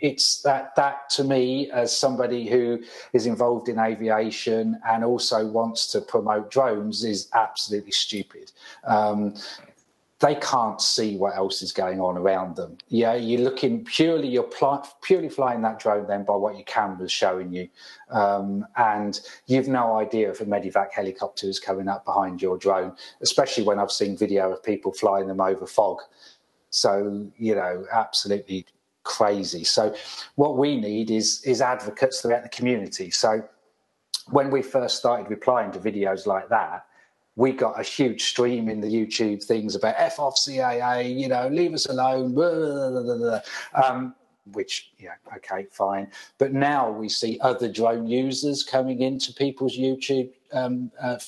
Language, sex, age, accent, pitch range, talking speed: English, male, 40-59, British, 105-130 Hz, 160 wpm